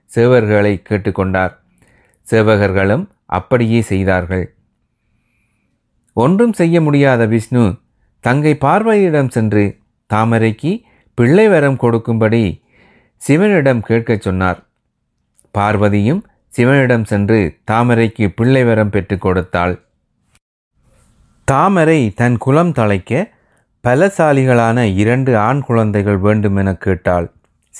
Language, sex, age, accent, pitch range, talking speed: Tamil, male, 30-49, native, 105-140 Hz, 75 wpm